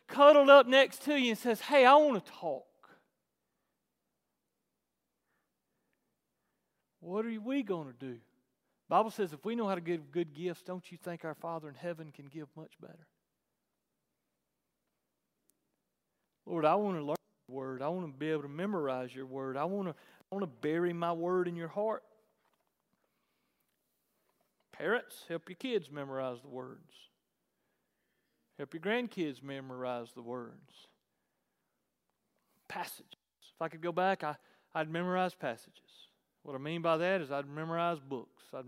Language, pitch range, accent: English, 135-190 Hz, American